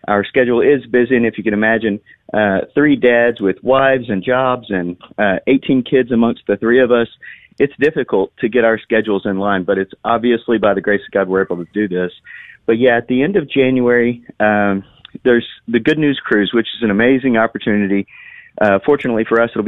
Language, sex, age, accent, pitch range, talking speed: English, male, 40-59, American, 105-125 Hz, 210 wpm